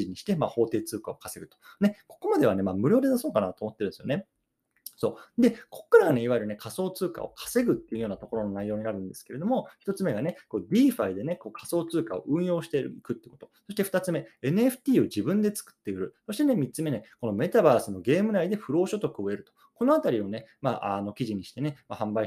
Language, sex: Japanese, male